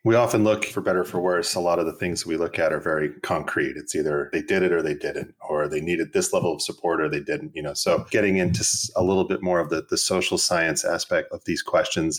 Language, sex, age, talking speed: English, male, 30-49, 270 wpm